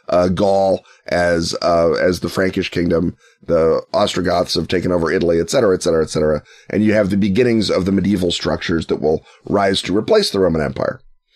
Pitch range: 95-125 Hz